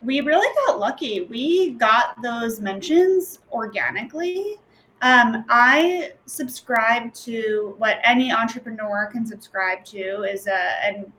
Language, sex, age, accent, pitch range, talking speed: English, female, 20-39, American, 210-255 Hz, 120 wpm